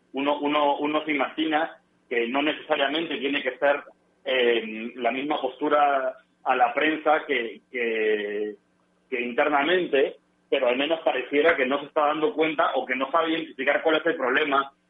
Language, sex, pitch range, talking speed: Spanish, male, 135-195 Hz, 165 wpm